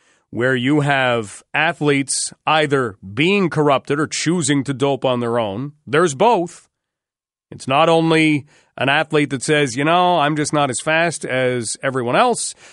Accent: American